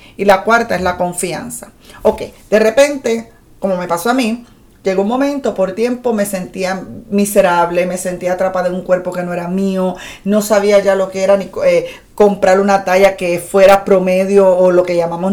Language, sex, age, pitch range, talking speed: Spanish, female, 40-59, 185-220 Hz, 195 wpm